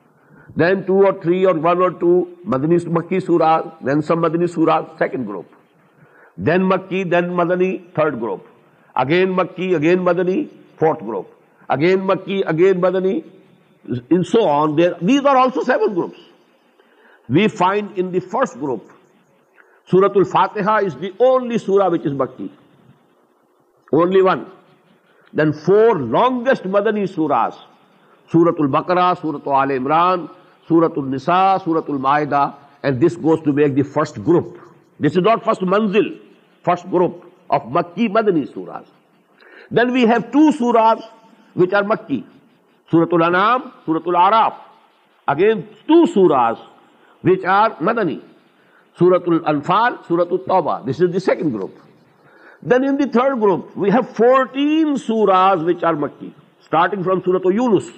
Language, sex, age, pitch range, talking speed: Urdu, male, 60-79, 165-205 Hz, 140 wpm